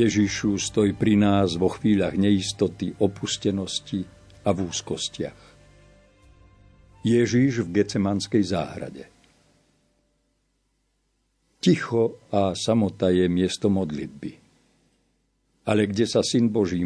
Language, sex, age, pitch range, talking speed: Slovak, male, 50-69, 100-120 Hz, 95 wpm